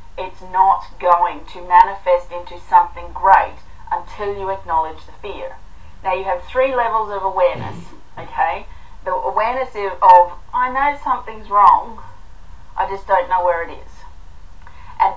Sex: female